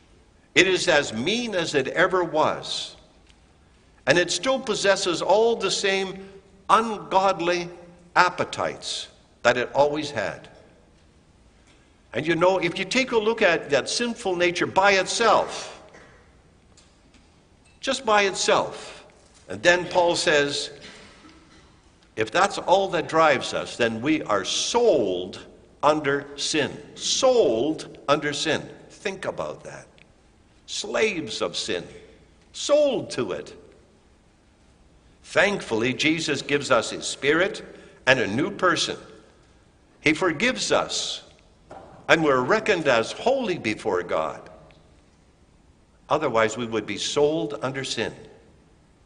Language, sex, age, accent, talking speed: English, male, 60-79, American, 115 wpm